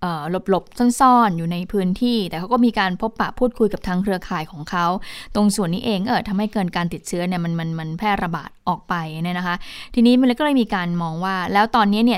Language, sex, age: Thai, female, 20-39